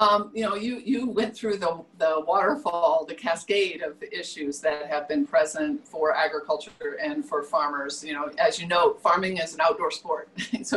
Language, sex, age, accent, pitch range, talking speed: English, female, 50-69, American, 170-255 Hz, 195 wpm